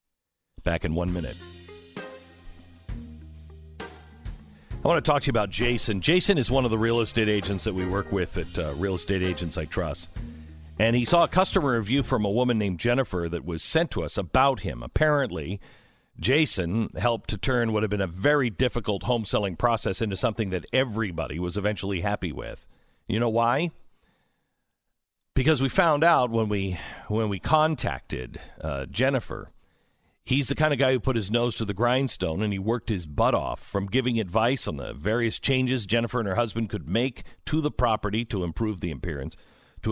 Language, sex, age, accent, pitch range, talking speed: English, male, 50-69, American, 85-120 Hz, 185 wpm